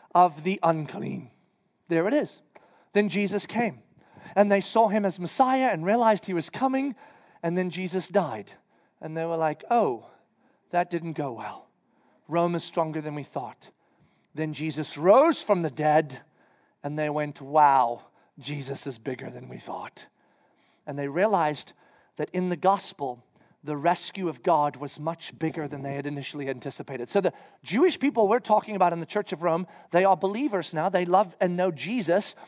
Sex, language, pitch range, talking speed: male, English, 165-245 Hz, 175 wpm